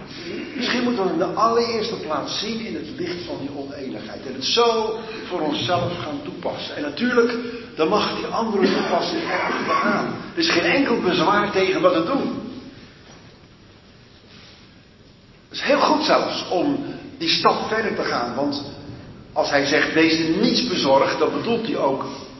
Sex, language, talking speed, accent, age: male, Dutch, 165 wpm, Dutch, 50-69